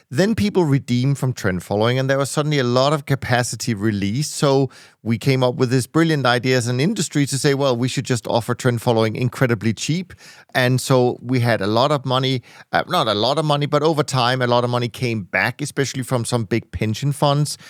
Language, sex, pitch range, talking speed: English, male, 115-140 Hz, 220 wpm